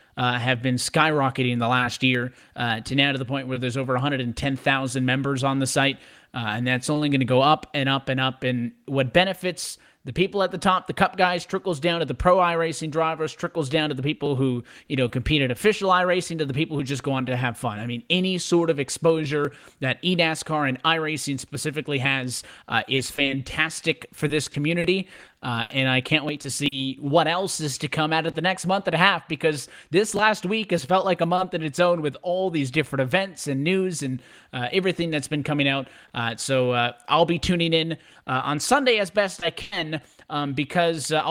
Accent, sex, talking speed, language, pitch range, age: American, male, 225 wpm, English, 130-165 Hz, 30-49